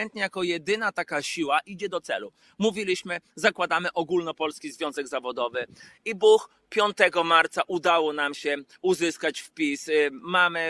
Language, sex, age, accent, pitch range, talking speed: Polish, male, 30-49, native, 150-185 Hz, 125 wpm